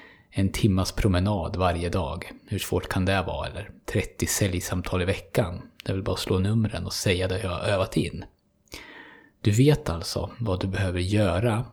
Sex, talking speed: male, 175 wpm